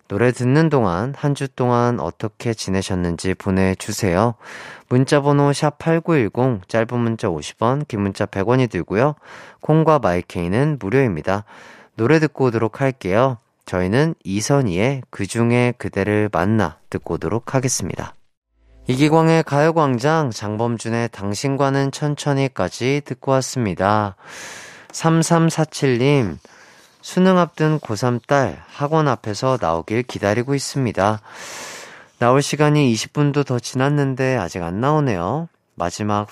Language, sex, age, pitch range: Korean, male, 30-49, 100-140 Hz